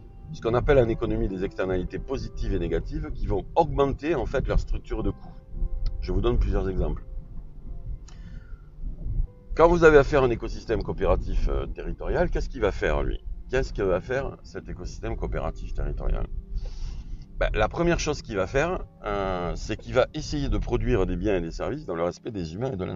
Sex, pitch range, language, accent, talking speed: male, 90-125 Hz, French, French, 190 wpm